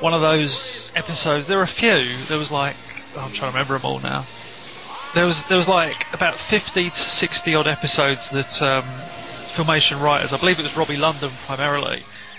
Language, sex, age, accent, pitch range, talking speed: English, male, 30-49, British, 135-165 Hz, 200 wpm